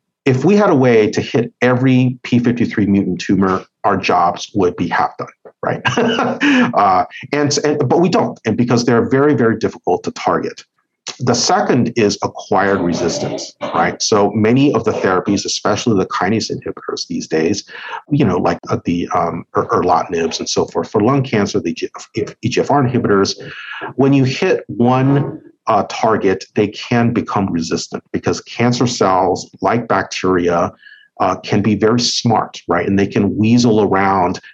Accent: American